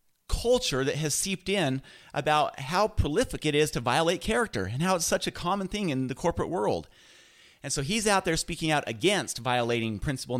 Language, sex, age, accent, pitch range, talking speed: English, male, 30-49, American, 125-180 Hz, 195 wpm